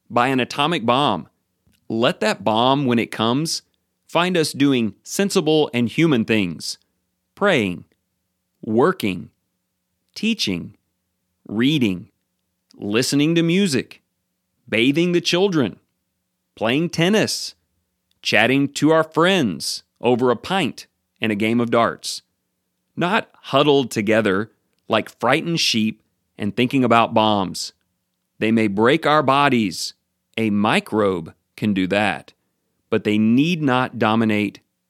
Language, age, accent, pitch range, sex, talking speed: English, 40-59, American, 95-130 Hz, male, 115 wpm